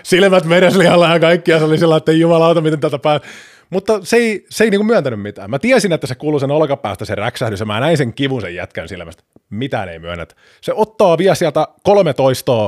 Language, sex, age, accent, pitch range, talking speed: Finnish, male, 30-49, native, 120-180 Hz, 220 wpm